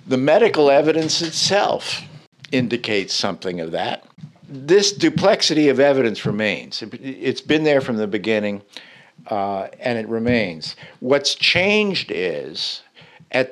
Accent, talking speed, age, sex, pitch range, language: American, 120 wpm, 60-79, male, 115-160 Hz, English